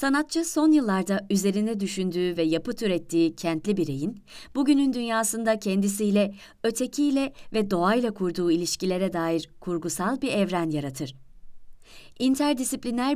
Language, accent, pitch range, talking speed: Turkish, native, 170-220 Hz, 110 wpm